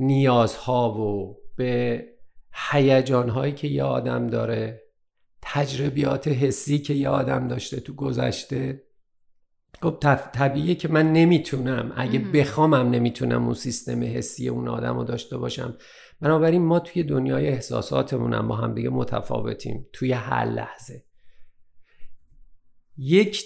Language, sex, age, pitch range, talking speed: Persian, male, 50-69, 115-145 Hz, 115 wpm